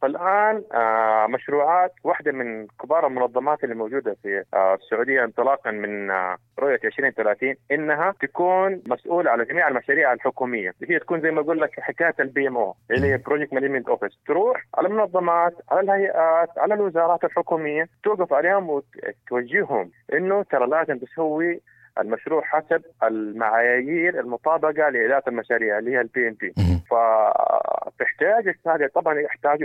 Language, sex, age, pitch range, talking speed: Arabic, male, 30-49, 125-180 Hz, 130 wpm